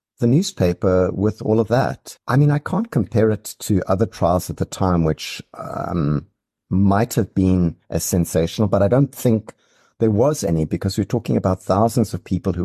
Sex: male